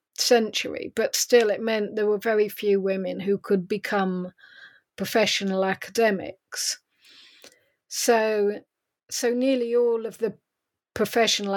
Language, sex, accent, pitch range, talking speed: English, female, British, 200-245 Hz, 115 wpm